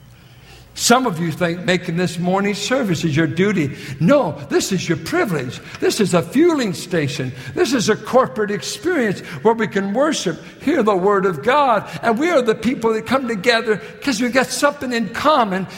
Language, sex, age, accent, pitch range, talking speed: English, male, 60-79, American, 155-225 Hz, 185 wpm